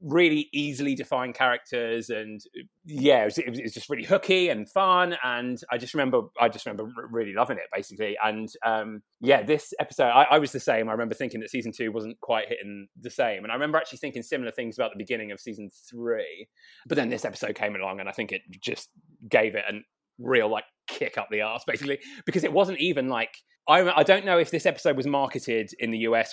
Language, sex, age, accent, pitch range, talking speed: English, male, 20-39, British, 115-180 Hz, 220 wpm